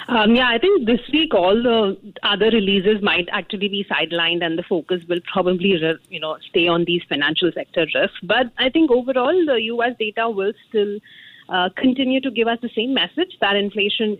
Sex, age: female, 30-49